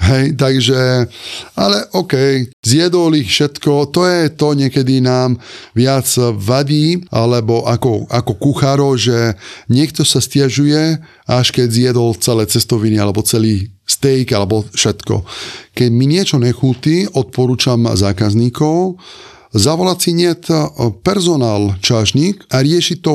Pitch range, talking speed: 120-160 Hz, 120 wpm